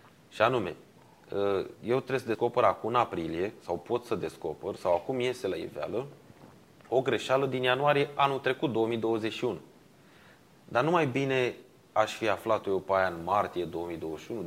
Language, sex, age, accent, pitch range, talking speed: Romanian, male, 30-49, native, 110-135 Hz, 150 wpm